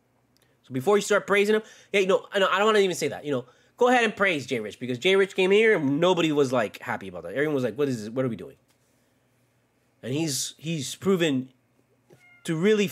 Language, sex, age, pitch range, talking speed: English, male, 20-39, 125-180 Hz, 240 wpm